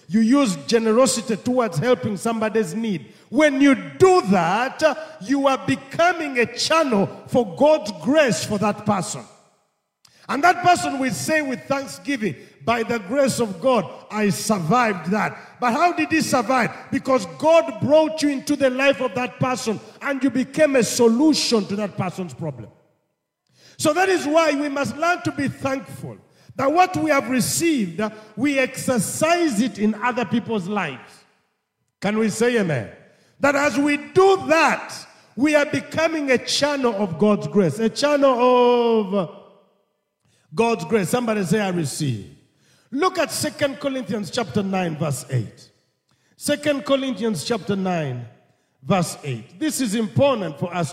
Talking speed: 150 wpm